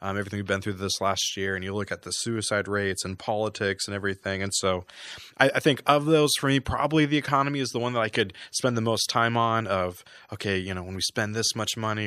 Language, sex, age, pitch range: English, male, 20-39, 95-110 Hz